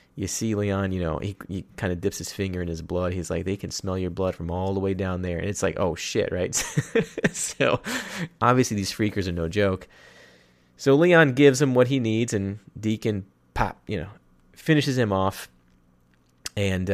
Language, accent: English, American